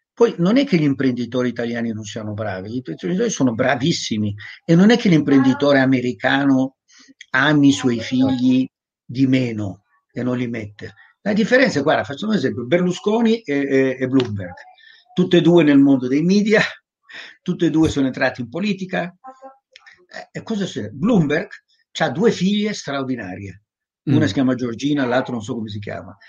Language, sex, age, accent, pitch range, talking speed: Italian, male, 50-69, native, 125-205 Hz, 170 wpm